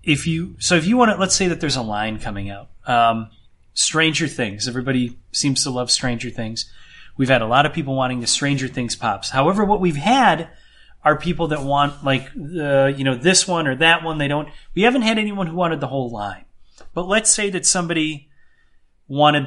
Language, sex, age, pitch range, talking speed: English, male, 30-49, 115-160 Hz, 215 wpm